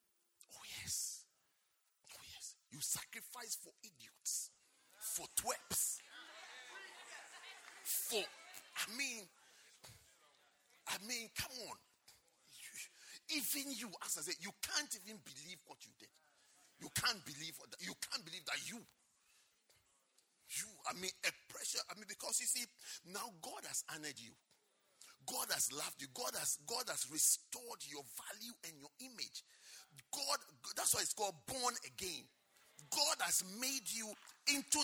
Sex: male